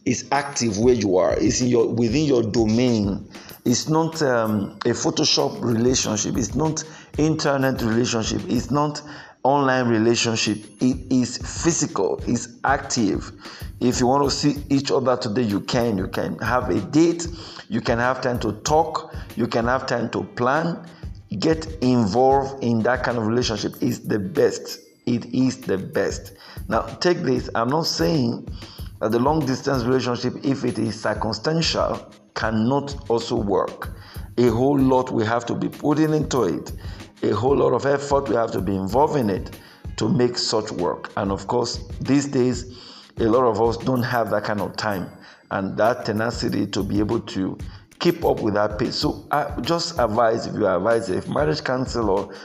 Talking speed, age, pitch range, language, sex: 175 wpm, 50-69, 110-135 Hz, English, male